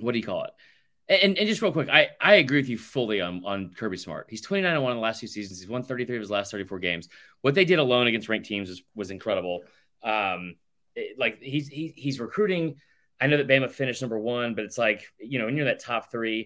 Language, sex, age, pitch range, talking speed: English, male, 30-49, 110-155 Hz, 265 wpm